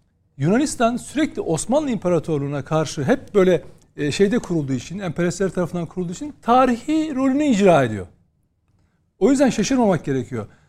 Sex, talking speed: male, 125 wpm